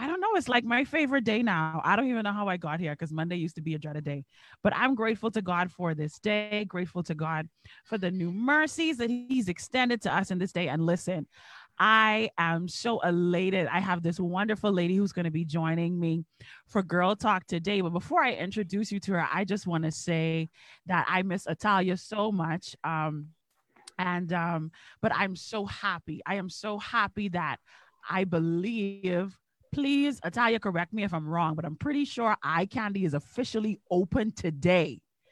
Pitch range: 165-210 Hz